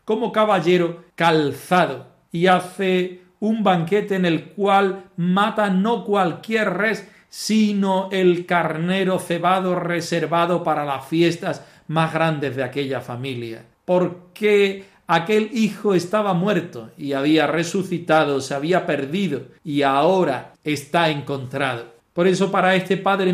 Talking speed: 120 wpm